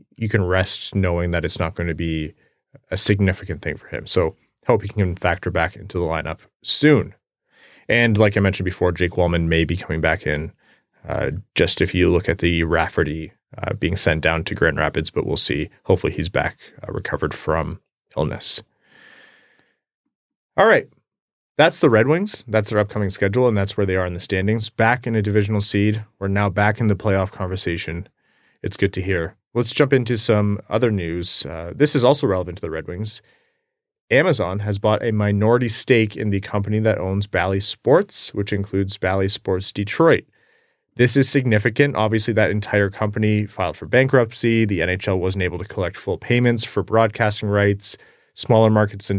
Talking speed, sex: 185 wpm, male